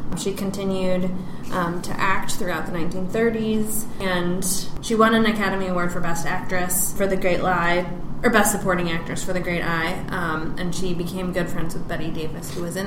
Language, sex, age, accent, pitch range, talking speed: English, female, 20-39, American, 170-190 Hz, 185 wpm